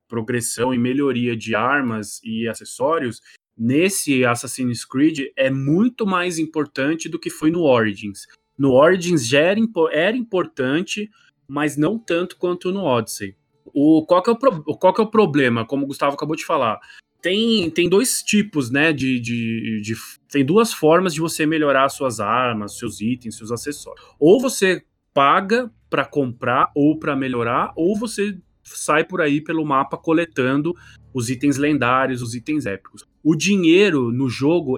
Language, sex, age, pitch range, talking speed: Portuguese, male, 20-39, 125-170 Hz, 165 wpm